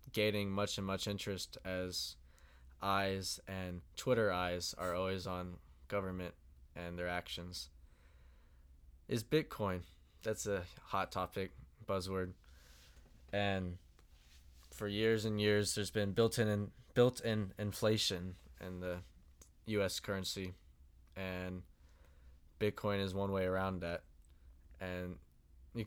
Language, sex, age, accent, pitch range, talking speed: English, male, 20-39, American, 70-100 Hz, 115 wpm